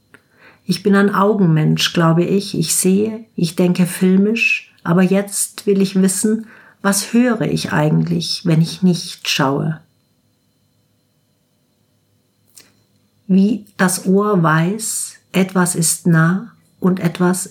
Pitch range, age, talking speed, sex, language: 160-195 Hz, 50-69, 115 wpm, female, German